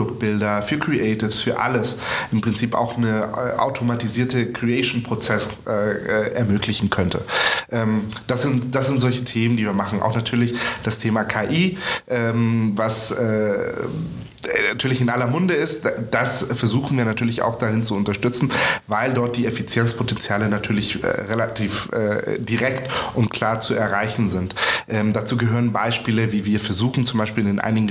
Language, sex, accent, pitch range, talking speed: German, male, German, 105-125 Hz, 155 wpm